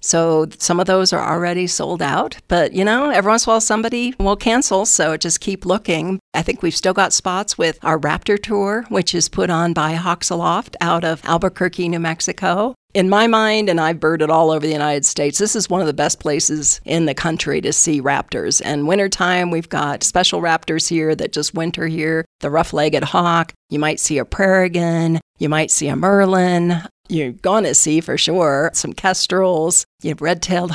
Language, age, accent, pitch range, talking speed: English, 50-69, American, 155-185 Hz, 205 wpm